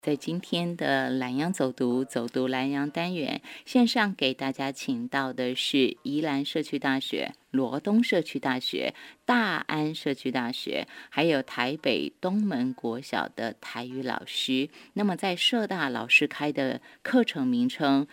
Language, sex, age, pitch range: Chinese, female, 30-49, 140-215 Hz